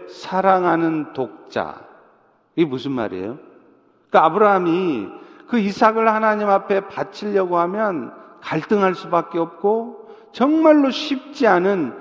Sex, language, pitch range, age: male, Korean, 170-250 Hz, 50-69